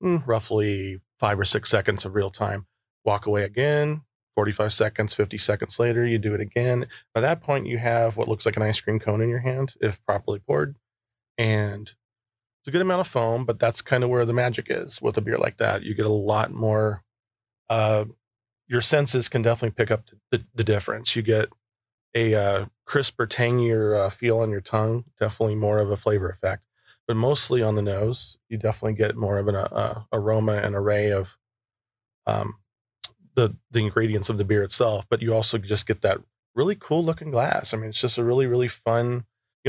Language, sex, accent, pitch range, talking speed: English, male, American, 105-120 Hz, 200 wpm